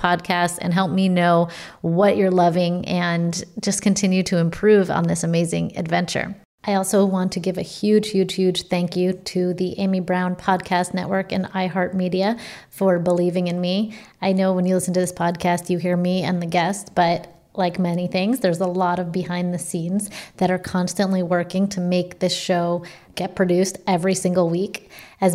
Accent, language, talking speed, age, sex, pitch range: American, English, 185 wpm, 30-49, female, 180-200 Hz